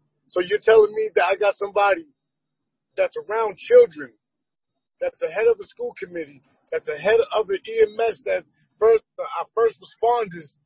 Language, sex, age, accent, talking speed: English, male, 30-49, American, 165 wpm